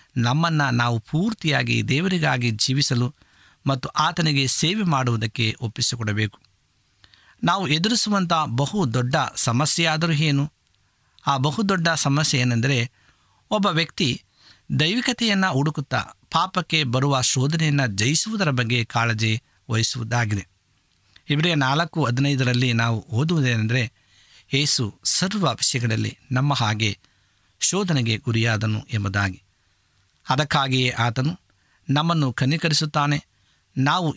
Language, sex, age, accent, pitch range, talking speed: Kannada, male, 50-69, native, 115-160 Hz, 85 wpm